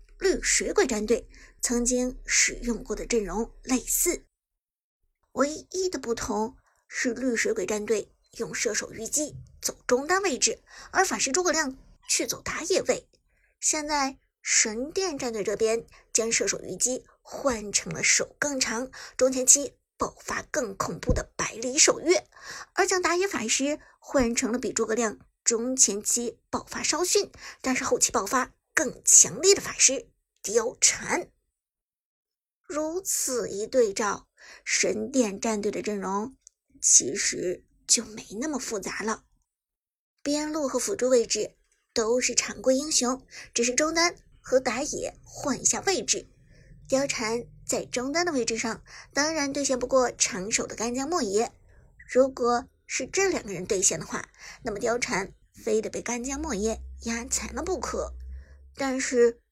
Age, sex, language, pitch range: 50-69, male, Chinese, 230-330 Hz